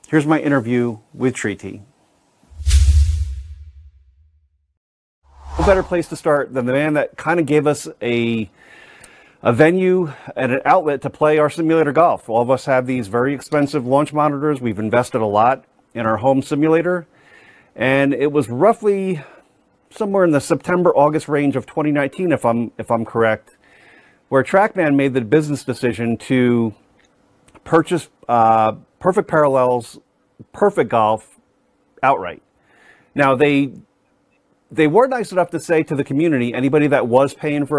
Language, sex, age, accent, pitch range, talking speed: English, male, 40-59, American, 115-155 Hz, 150 wpm